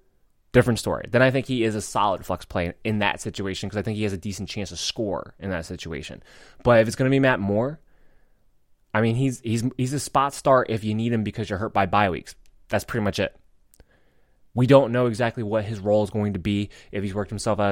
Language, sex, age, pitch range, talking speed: English, male, 20-39, 95-125 Hz, 245 wpm